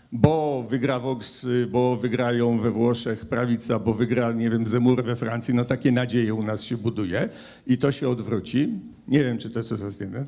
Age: 50-69